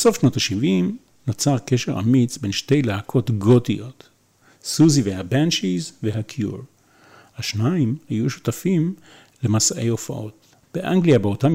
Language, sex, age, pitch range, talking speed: Hebrew, male, 40-59, 110-155 Hz, 105 wpm